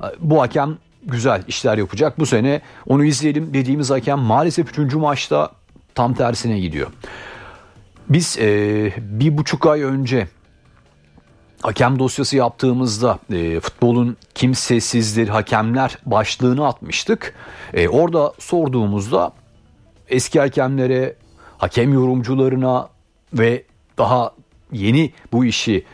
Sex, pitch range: male, 110-140 Hz